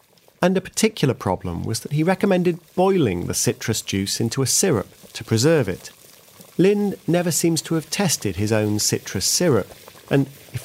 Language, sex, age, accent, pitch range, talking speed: English, male, 40-59, British, 100-155 Hz, 170 wpm